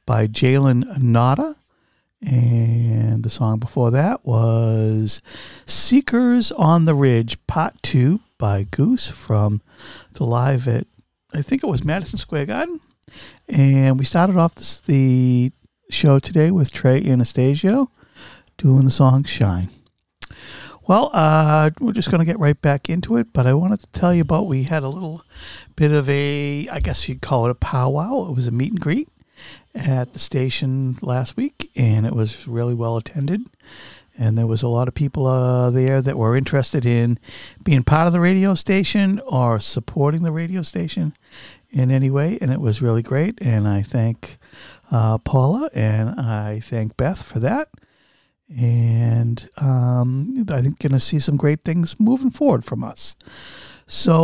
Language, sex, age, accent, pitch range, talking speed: English, male, 50-69, American, 120-165 Hz, 165 wpm